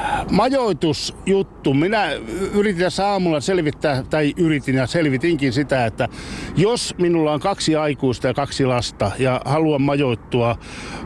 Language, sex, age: Finnish, male, 60-79